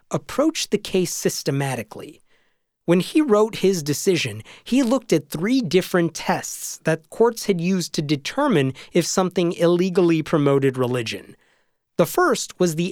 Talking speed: 140 wpm